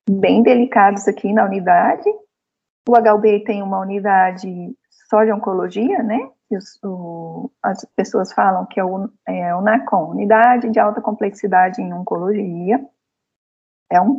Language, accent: Portuguese, Brazilian